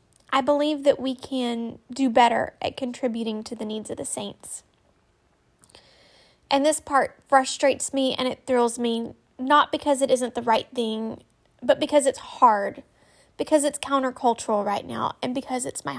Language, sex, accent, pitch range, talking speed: English, female, American, 230-270 Hz, 165 wpm